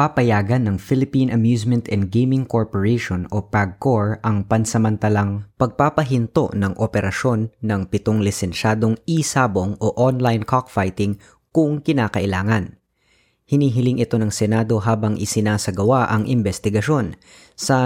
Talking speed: 110 wpm